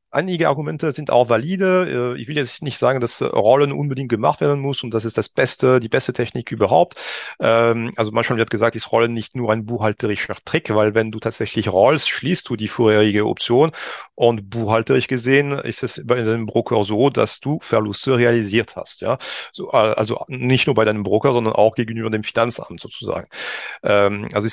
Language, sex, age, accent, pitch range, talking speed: German, male, 40-59, German, 110-135 Hz, 185 wpm